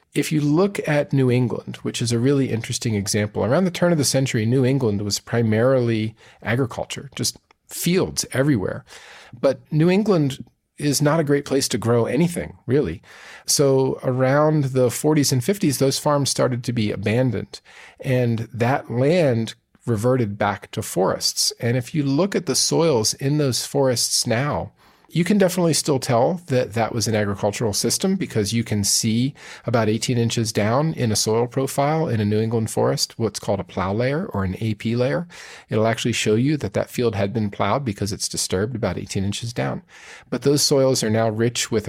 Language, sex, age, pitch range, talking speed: English, male, 40-59, 110-140 Hz, 185 wpm